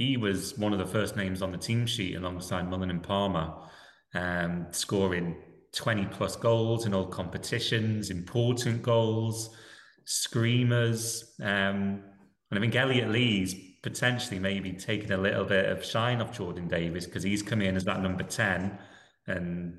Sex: male